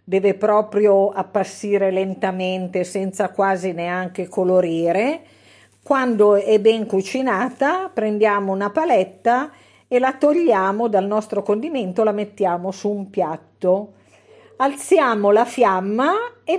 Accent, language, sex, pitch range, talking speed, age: native, Italian, female, 195-260 Hz, 110 wpm, 50-69